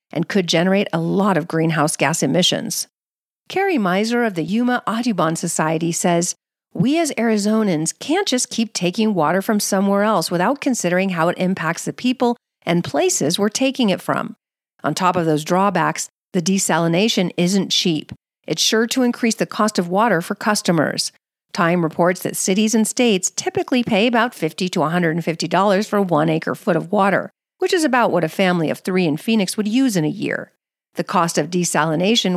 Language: English